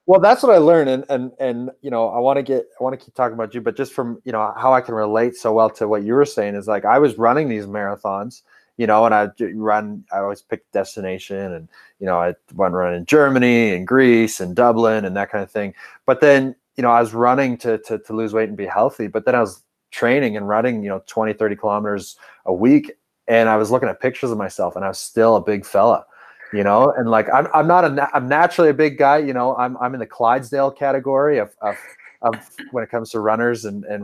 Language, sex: English, male